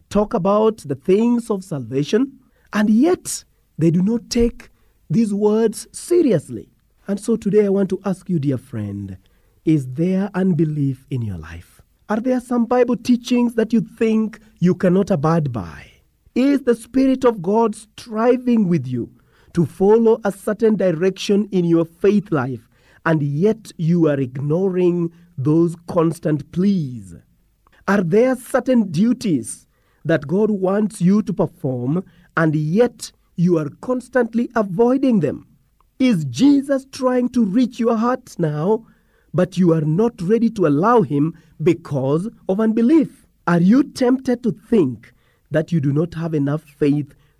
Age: 40-59